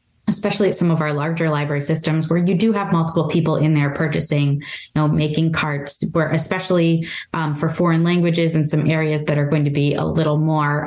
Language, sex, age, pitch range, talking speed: English, female, 20-39, 150-170 Hz, 210 wpm